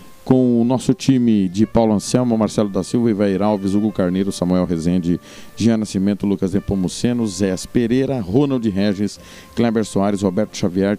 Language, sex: Portuguese, male